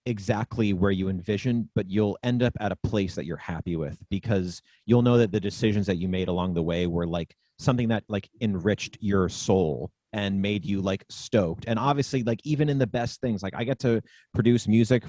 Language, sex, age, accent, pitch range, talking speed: English, male, 30-49, American, 95-120 Hz, 215 wpm